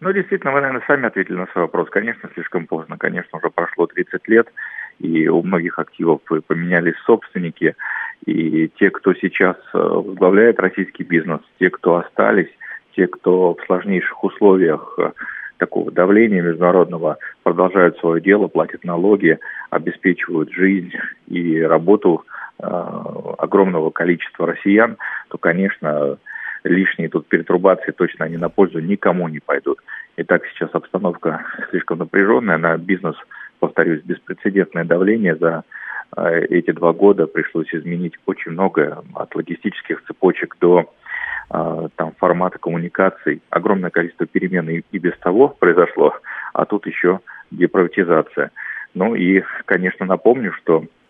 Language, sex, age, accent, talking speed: Russian, male, 40-59, native, 125 wpm